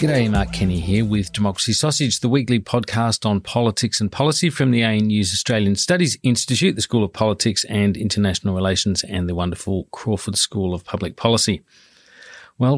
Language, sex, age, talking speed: English, male, 40-59, 170 wpm